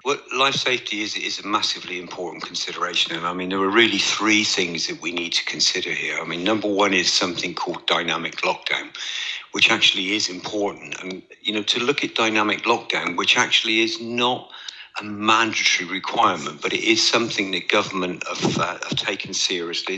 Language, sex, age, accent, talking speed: English, male, 50-69, British, 185 wpm